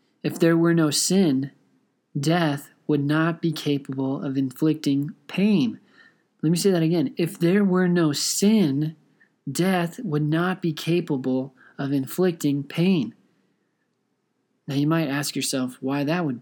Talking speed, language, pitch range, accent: 145 wpm, English, 135-160 Hz, American